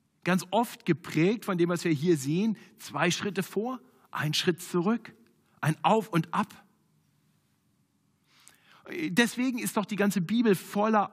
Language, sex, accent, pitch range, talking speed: German, male, German, 145-210 Hz, 140 wpm